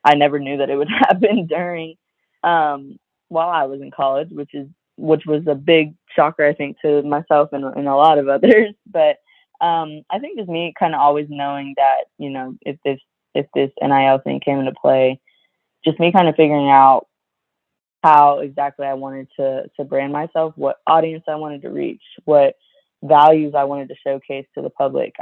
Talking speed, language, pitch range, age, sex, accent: 195 wpm, English, 140-155 Hz, 20-39, female, American